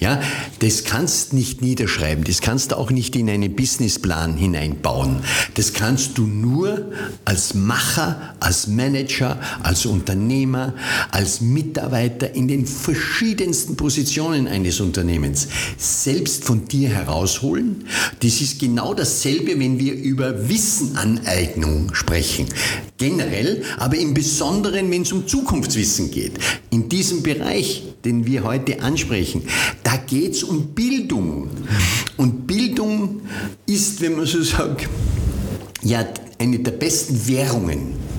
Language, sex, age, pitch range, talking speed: German, male, 50-69, 100-135 Hz, 125 wpm